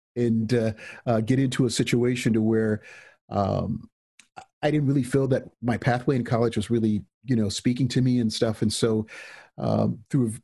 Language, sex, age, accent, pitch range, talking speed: English, male, 50-69, American, 100-120 Hz, 185 wpm